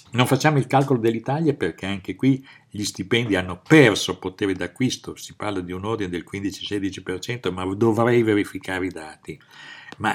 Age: 50-69